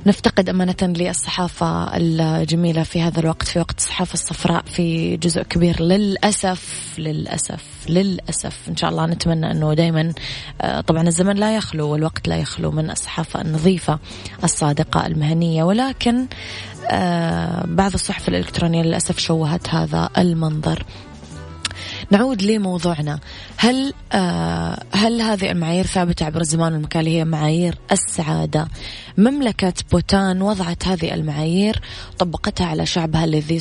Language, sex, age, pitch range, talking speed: Arabic, female, 20-39, 160-185 Hz, 120 wpm